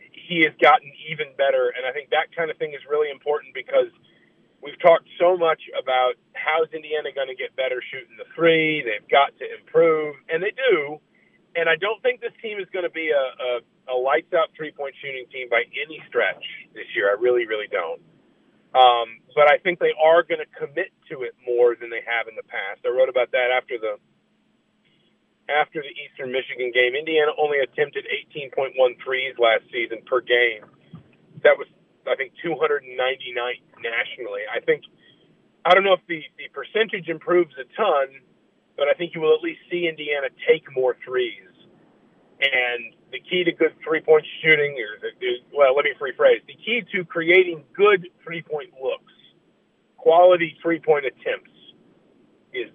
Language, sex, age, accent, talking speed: English, male, 40-59, American, 175 wpm